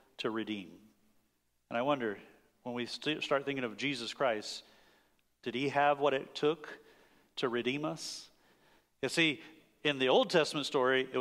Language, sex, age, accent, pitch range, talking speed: English, male, 40-59, American, 110-150 Hz, 155 wpm